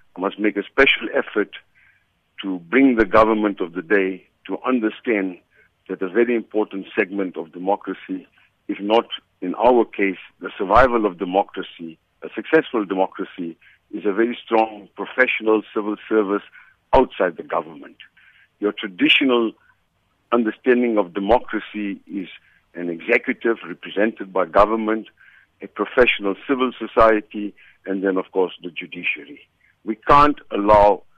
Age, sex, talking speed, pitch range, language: 60-79, male, 130 wpm, 100-120 Hz, English